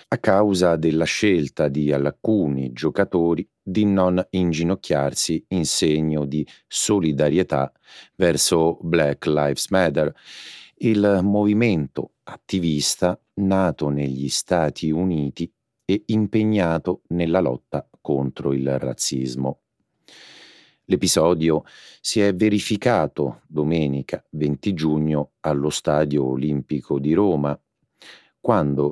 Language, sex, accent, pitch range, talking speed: Italian, male, native, 70-95 Hz, 95 wpm